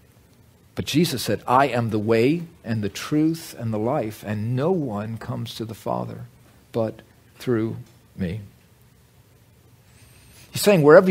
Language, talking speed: English, 140 wpm